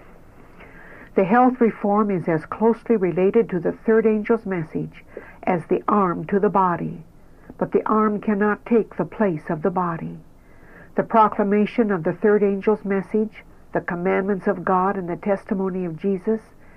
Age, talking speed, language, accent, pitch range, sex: 60-79, 160 wpm, English, American, 180-215 Hz, female